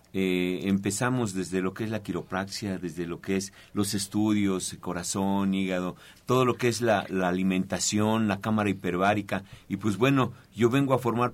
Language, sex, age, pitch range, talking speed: Spanish, male, 50-69, 95-115 Hz, 175 wpm